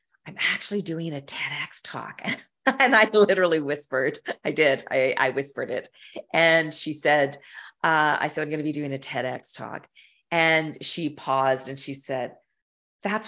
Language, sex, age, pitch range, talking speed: English, female, 40-59, 140-190 Hz, 165 wpm